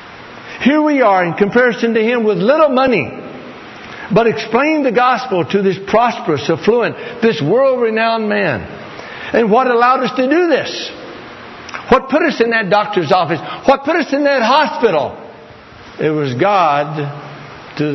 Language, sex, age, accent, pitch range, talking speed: English, male, 60-79, American, 150-210 Hz, 150 wpm